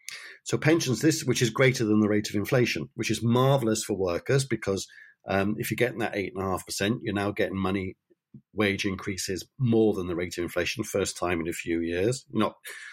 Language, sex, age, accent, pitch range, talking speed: English, male, 50-69, British, 100-125 Hz, 195 wpm